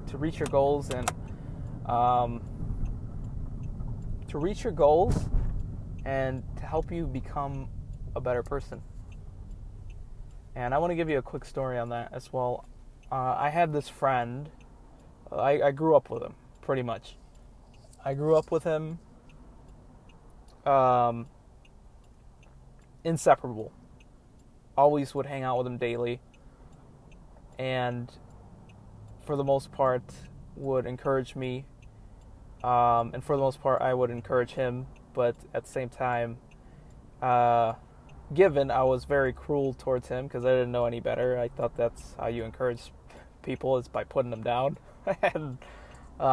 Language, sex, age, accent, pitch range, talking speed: English, male, 20-39, American, 115-135 Hz, 140 wpm